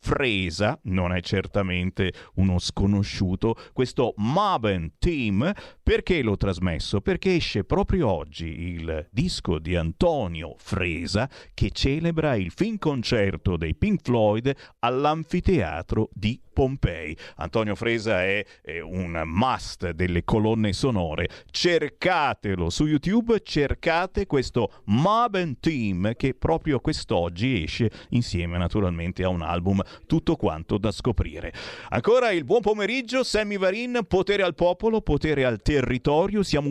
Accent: native